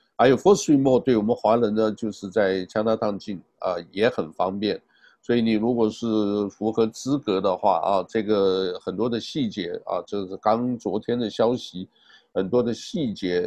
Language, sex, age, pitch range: Chinese, male, 50-69, 95-115 Hz